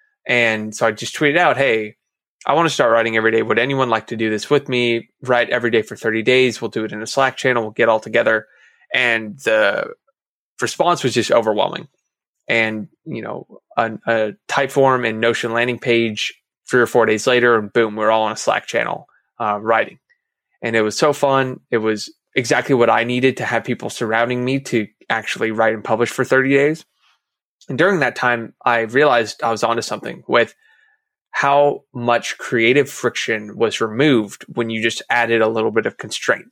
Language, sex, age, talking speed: English, male, 20-39, 200 wpm